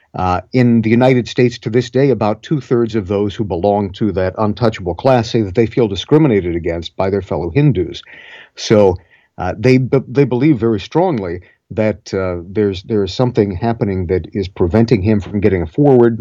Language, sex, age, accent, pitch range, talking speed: English, male, 50-69, American, 95-125 Hz, 185 wpm